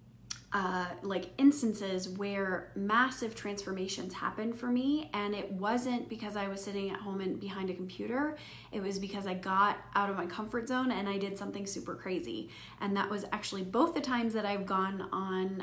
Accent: American